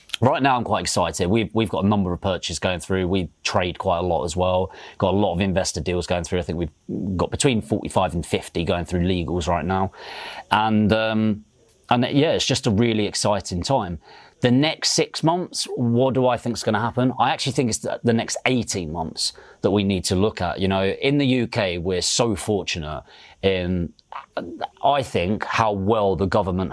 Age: 30-49